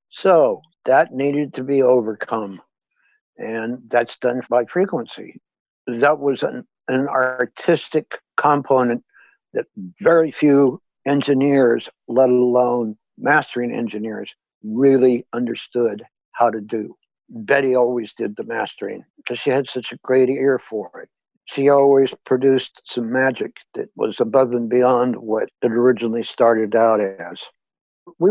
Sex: male